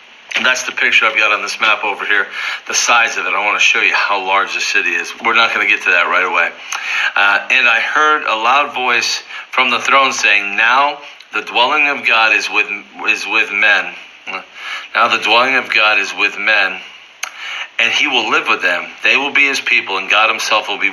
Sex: male